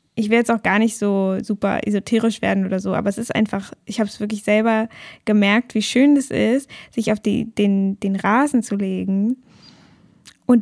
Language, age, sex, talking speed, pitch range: German, 10-29, female, 200 wpm, 205-240 Hz